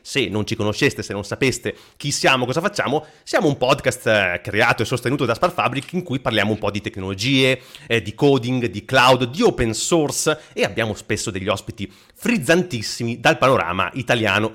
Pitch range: 110-155 Hz